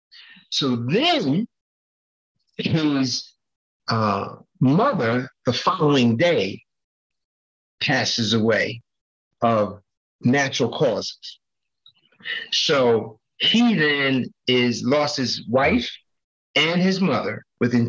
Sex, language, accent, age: male, English, American, 50-69